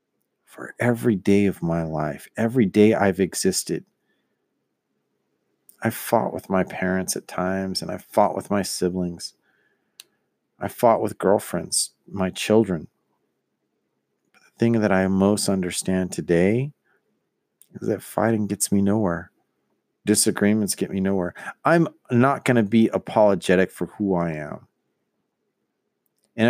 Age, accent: 40-59, American